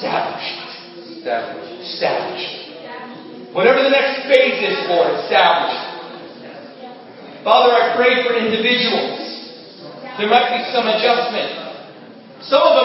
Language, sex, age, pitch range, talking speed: English, male, 40-59, 230-275 Hz, 100 wpm